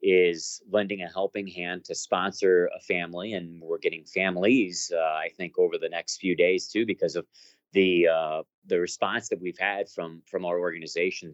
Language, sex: English, male